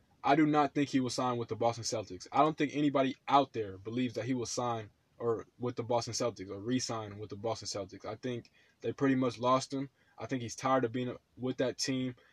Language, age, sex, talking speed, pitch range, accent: English, 20-39, male, 240 wpm, 115-135 Hz, American